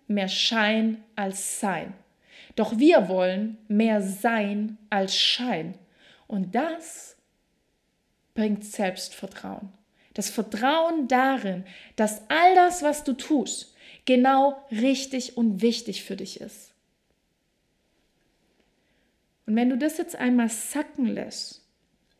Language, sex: German, female